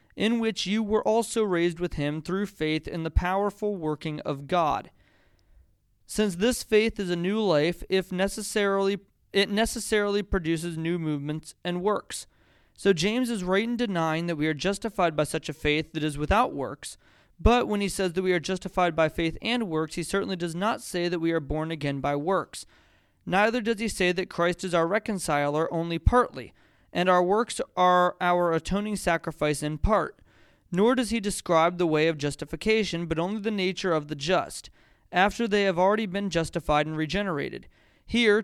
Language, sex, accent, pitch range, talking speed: English, male, American, 160-205 Hz, 185 wpm